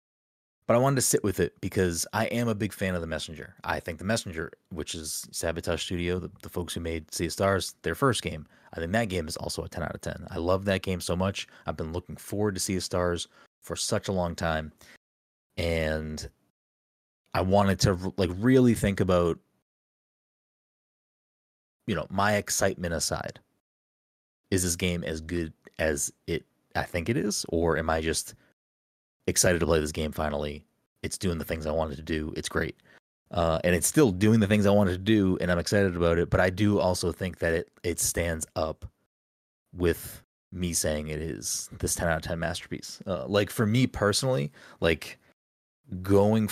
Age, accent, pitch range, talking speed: 30-49, American, 80-100 Hz, 195 wpm